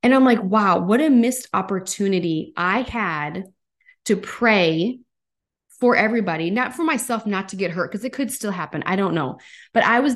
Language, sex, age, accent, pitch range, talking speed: English, female, 20-39, American, 170-220 Hz, 190 wpm